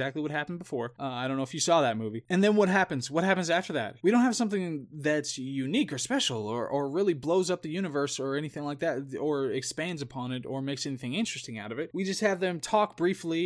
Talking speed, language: 255 wpm, English